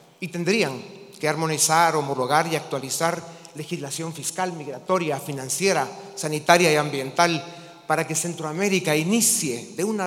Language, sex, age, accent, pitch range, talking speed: Spanish, male, 40-59, Mexican, 150-185 Hz, 120 wpm